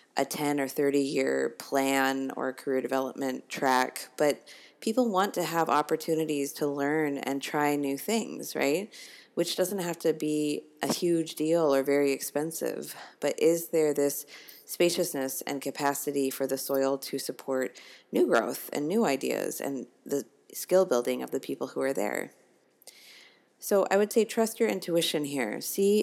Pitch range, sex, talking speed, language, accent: 140-165 Hz, female, 160 wpm, English, American